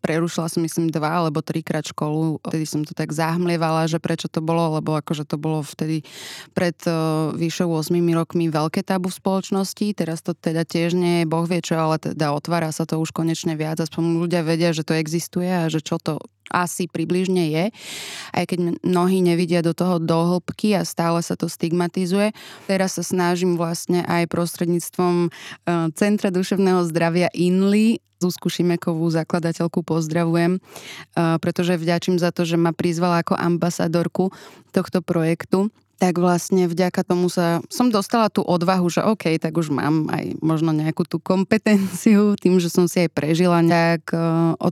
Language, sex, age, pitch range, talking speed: Slovak, female, 20-39, 165-180 Hz, 165 wpm